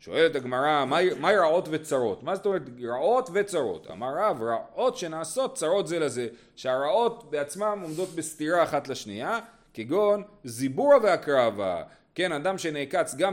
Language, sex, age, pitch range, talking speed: Hebrew, male, 30-49, 120-170 Hz, 140 wpm